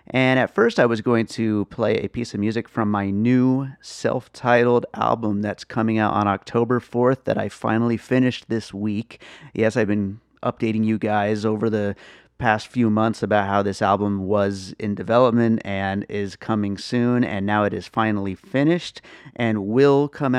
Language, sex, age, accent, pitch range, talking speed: English, male, 30-49, American, 100-120 Hz, 175 wpm